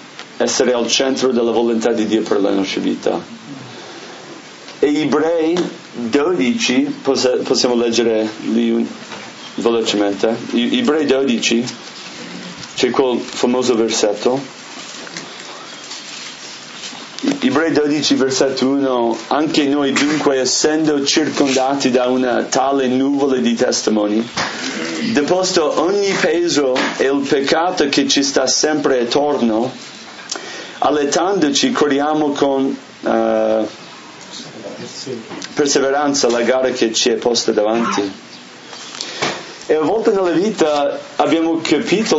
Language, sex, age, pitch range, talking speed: English, male, 30-49, 115-150 Hz, 95 wpm